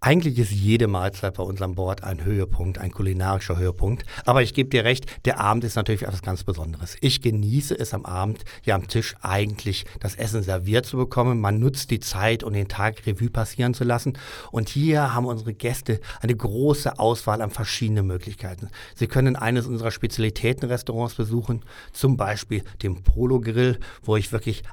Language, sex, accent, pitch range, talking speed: German, male, German, 100-120 Hz, 180 wpm